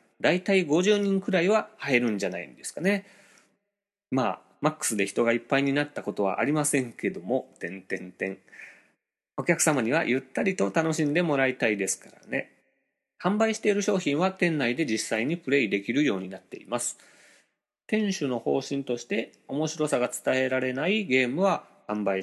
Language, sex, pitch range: Japanese, male, 125-180 Hz